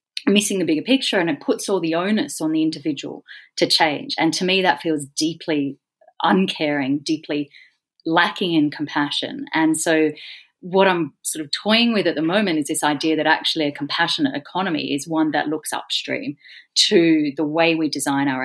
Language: English